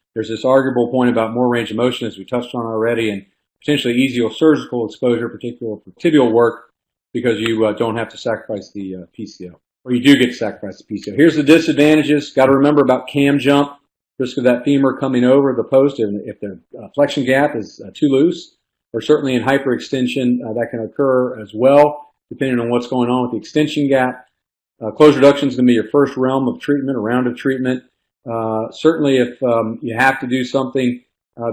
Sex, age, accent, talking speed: male, 40-59, American, 215 wpm